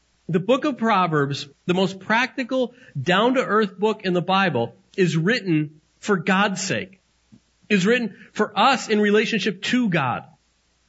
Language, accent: English, American